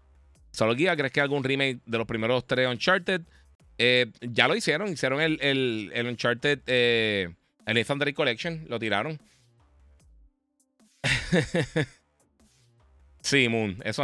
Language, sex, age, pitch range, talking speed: Spanish, male, 30-49, 115-155 Hz, 125 wpm